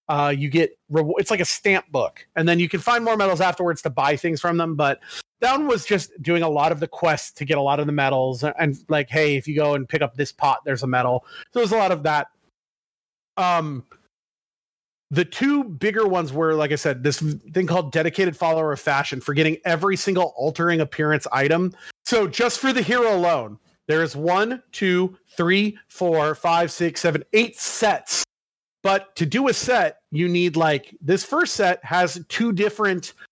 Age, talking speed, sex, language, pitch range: 30-49, 210 wpm, male, English, 155-195 Hz